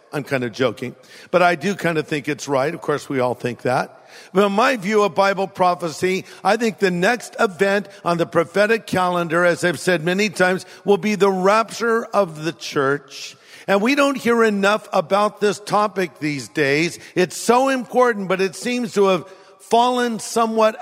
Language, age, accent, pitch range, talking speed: English, 50-69, American, 170-205 Hz, 190 wpm